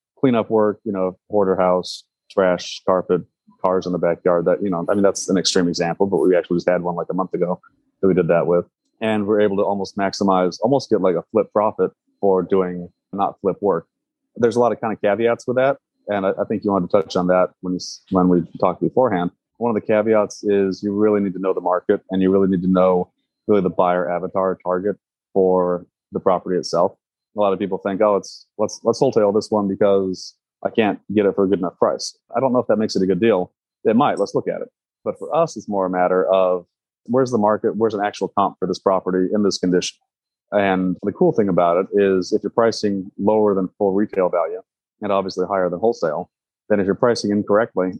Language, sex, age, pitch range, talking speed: English, male, 30-49, 90-105 Hz, 235 wpm